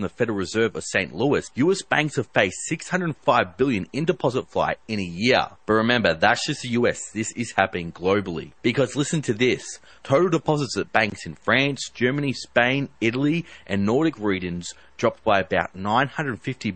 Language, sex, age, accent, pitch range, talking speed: English, male, 30-49, Australian, 100-135 Hz, 170 wpm